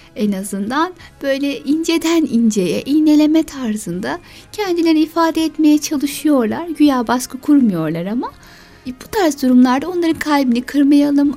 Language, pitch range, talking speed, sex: Turkish, 245-320 Hz, 115 wpm, female